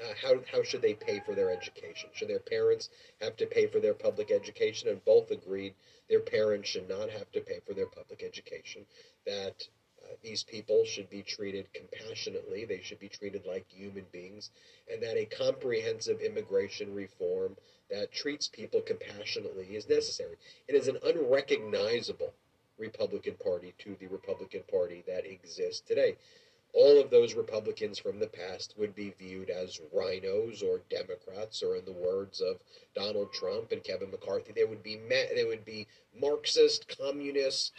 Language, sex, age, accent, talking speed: English, male, 40-59, American, 165 wpm